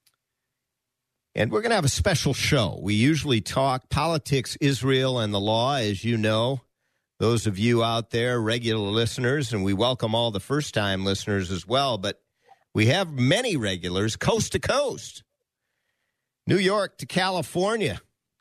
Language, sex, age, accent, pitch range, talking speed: English, male, 50-69, American, 110-145 Hz, 155 wpm